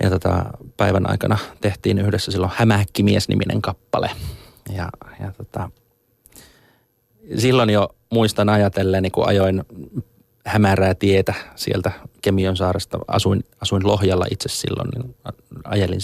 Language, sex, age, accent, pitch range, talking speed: Finnish, male, 30-49, native, 95-115 Hz, 110 wpm